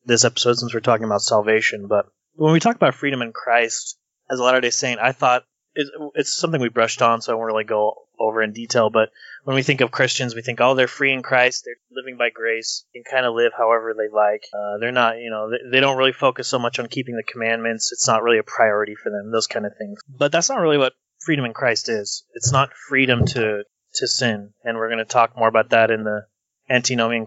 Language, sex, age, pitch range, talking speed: English, male, 20-39, 115-135 Hz, 245 wpm